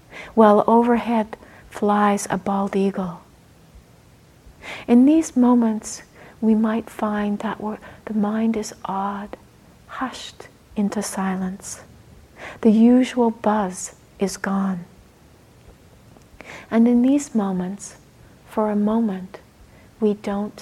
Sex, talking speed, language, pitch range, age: female, 100 wpm, English, 195-225 Hz, 60-79